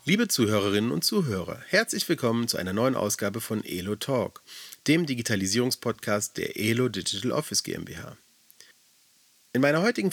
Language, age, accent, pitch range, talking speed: German, 40-59, German, 100-130 Hz, 135 wpm